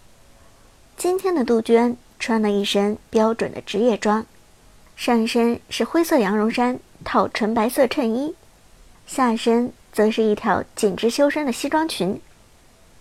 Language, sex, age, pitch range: Chinese, male, 60-79, 210-265 Hz